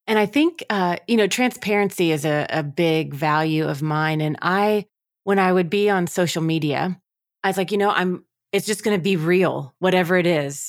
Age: 30-49